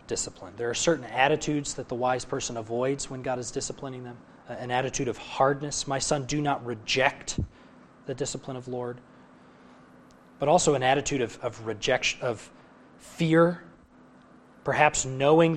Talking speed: 150 wpm